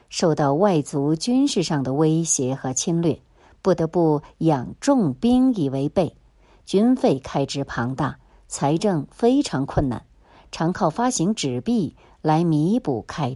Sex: male